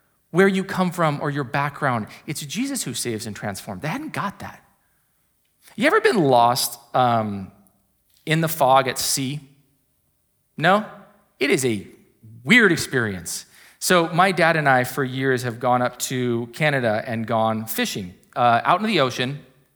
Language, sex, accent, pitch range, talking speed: English, male, American, 120-175 Hz, 160 wpm